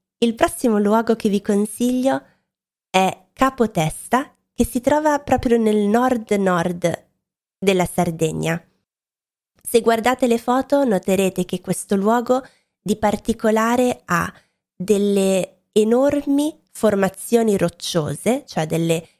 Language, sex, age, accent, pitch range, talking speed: Italian, female, 20-39, native, 175-230 Hz, 105 wpm